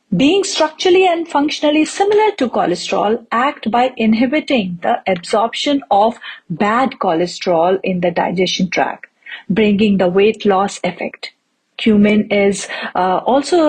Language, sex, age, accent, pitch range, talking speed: English, female, 50-69, Indian, 190-275 Hz, 125 wpm